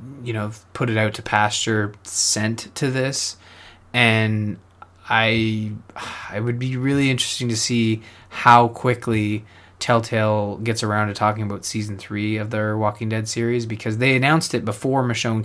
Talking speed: 150 wpm